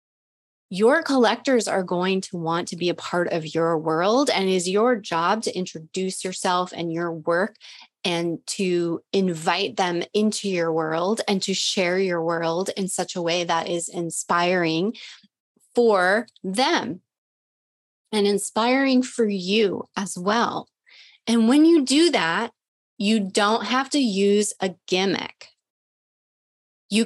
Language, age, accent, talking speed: English, 20-39, American, 140 wpm